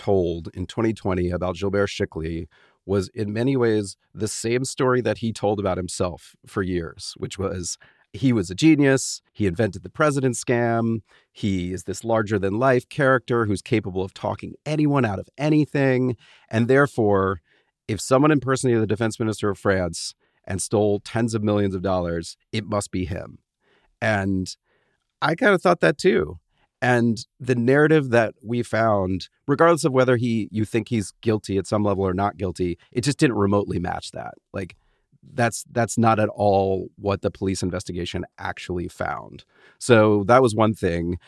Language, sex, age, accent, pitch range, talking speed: English, male, 40-59, American, 90-115 Hz, 165 wpm